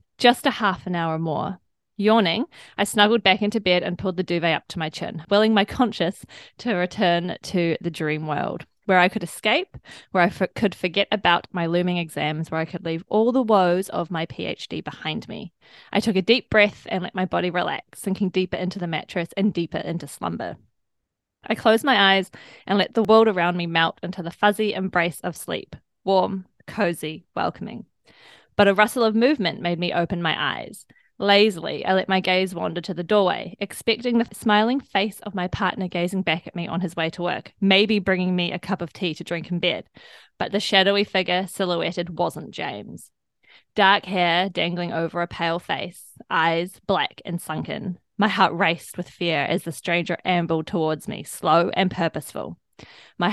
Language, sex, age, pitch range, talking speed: English, female, 20-39, 170-205 Hz, 190 wpm